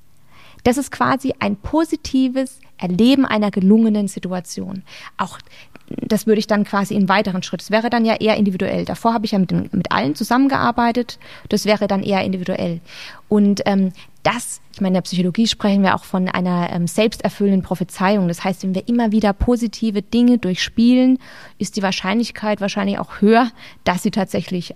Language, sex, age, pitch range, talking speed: German, female, 20-39, 190-235 Hz, 175 wpm